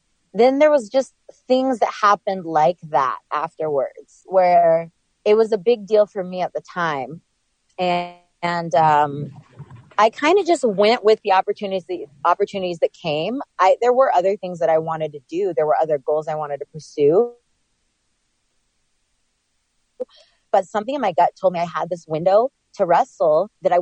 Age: 30-49